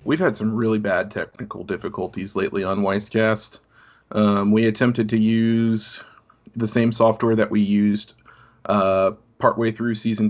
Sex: male